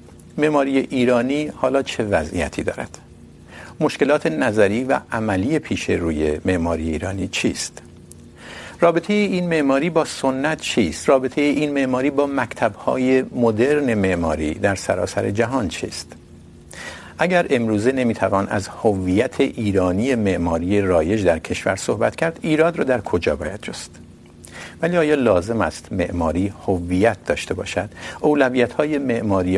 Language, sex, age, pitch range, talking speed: Urdu, male, 50-69, 85-125 Hz, 130 wpm